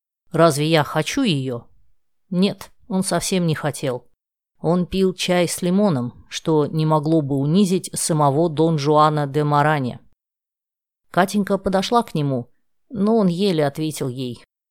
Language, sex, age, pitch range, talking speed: Russian, female, 20-39, 150-205 Hz, 135 wpm